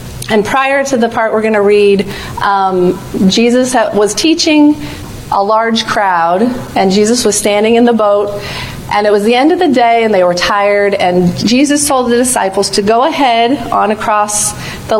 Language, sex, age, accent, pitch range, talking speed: English, female, 40-59, American, 195-245 Hz, 180 wpm